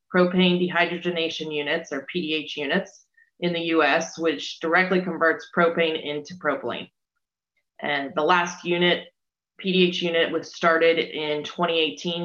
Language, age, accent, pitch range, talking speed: English, 20-39, American, 155-180 Hz, 120 wpm